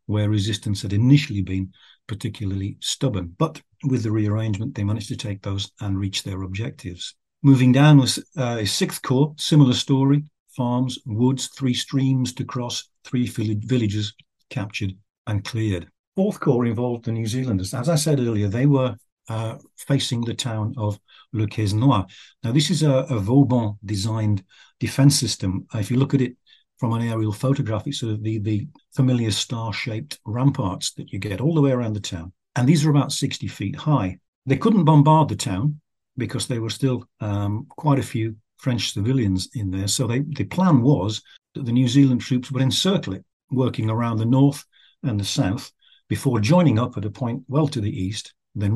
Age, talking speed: 50-69, 180 wpm